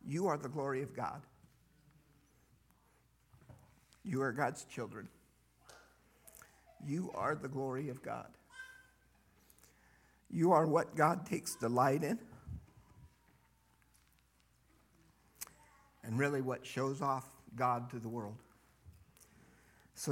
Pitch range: 120-145 Hz